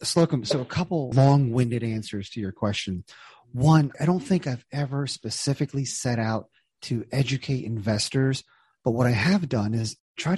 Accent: American